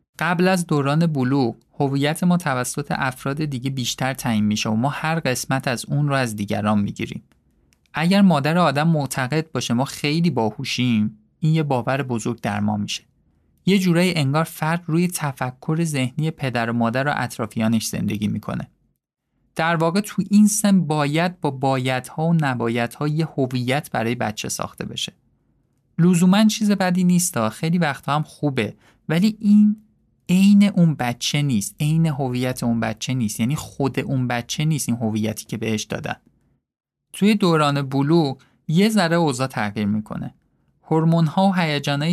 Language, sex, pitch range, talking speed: Persian, male, 120-165 Hz, 150 wpm